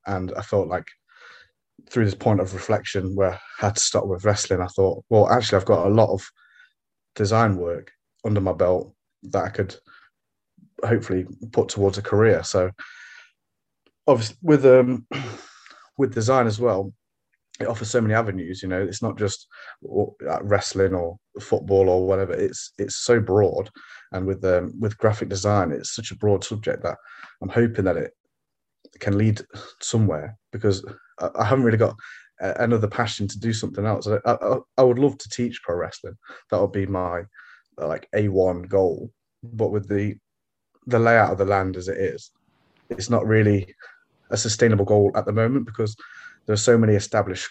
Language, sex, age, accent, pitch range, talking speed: English, male, 20-39, British, 95-115 Hz, 170 wpm